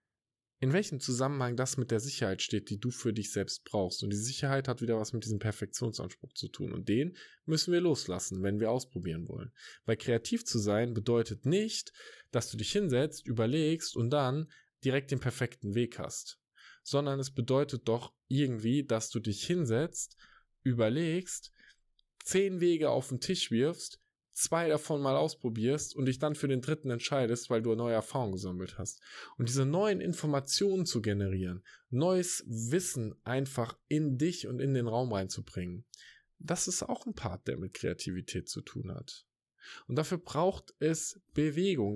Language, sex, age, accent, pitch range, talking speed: German, male, 10-29, German, 115-155 Hz, 165 wpm